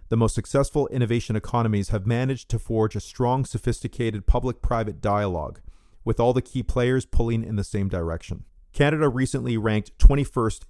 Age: 40-59